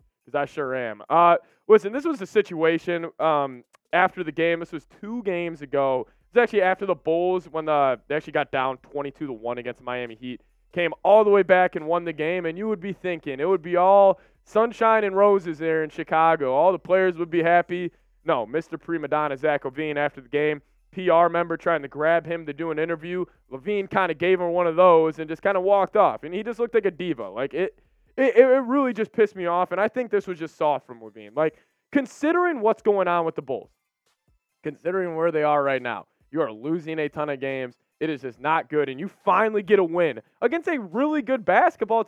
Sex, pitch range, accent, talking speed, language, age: male, 160-205 Hz, American, 230 wpm, English, 20-39